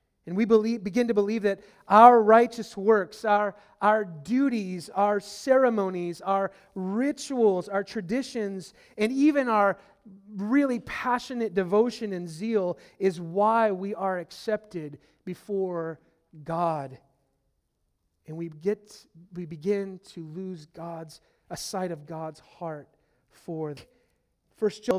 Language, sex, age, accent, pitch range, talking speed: English, male, 30-49, American, 155-205 Hz, 120 wpm